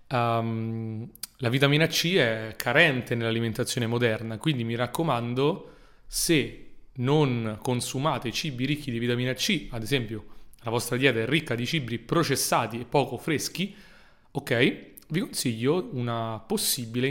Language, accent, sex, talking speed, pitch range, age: Italian, native, male, 125 wpm, 120-150 Hz, 30-49